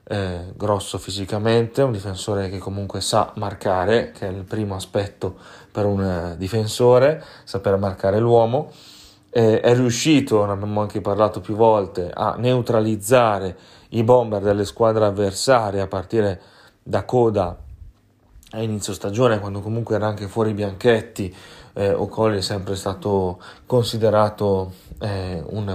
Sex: male